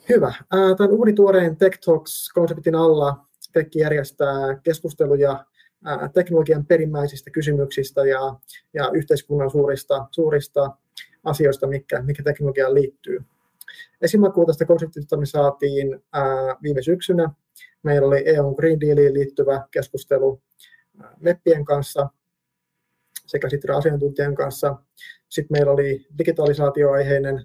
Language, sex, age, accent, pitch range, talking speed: Finnish, male, 30-49, native, 135-165 Hz, 90 wpm